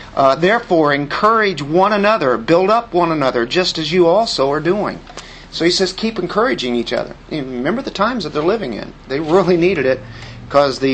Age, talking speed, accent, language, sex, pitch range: 50-69, 195 wpm, American, English, male, 135-175 Hz